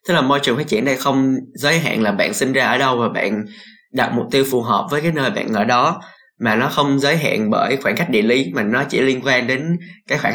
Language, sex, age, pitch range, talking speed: Vietnamese, male, 20-39, 125-175 Hz, 275 wpm